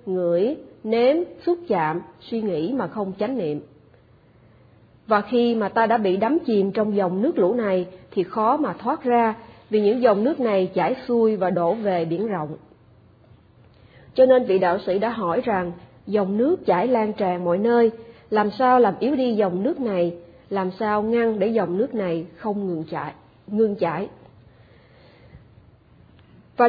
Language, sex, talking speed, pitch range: Vietnamese, female, 175 wpm, 185-240 Hz